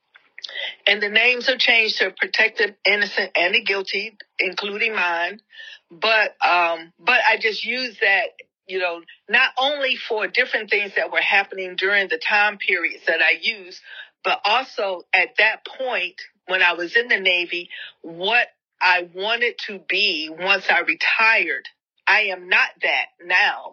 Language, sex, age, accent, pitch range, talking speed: English, female, 40-59, American, 180-245 Hz, 155 wpm